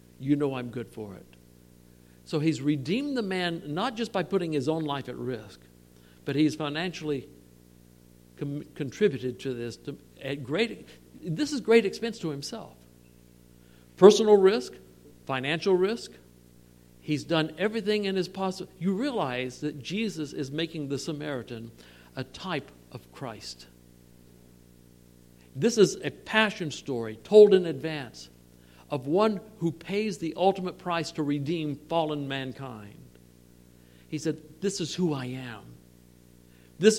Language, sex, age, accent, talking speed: English, male, 60-79, American, 140 wpm